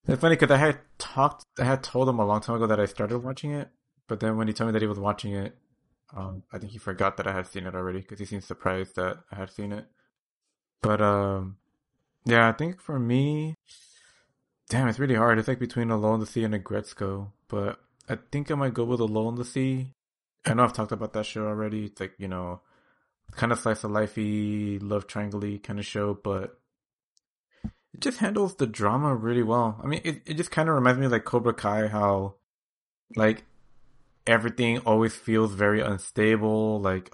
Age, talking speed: 20-39, 215 wpm